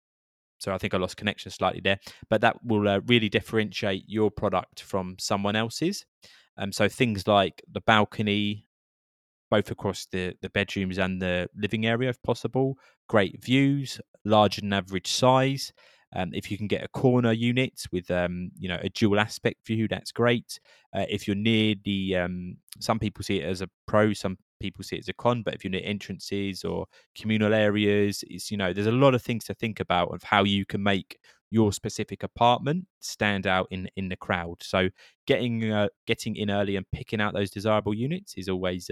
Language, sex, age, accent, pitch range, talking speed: English, male, 20-39, British, 95-115 Hz, 200 wpm